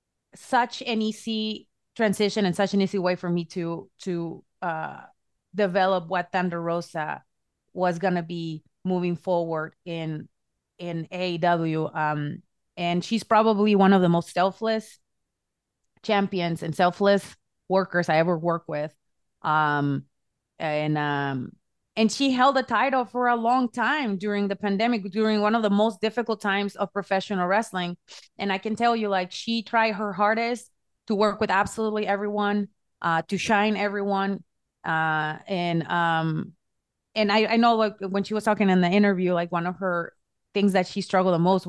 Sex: female